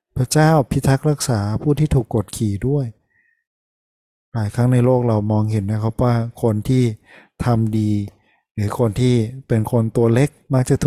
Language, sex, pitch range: Thai, male, 110-130 Hz